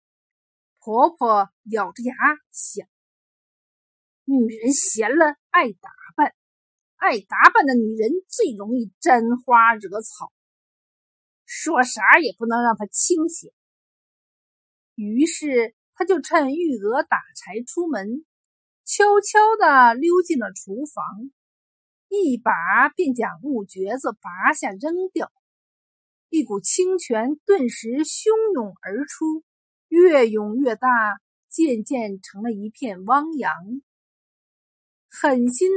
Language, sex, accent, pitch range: Chinese, female, native, 225-330 Hz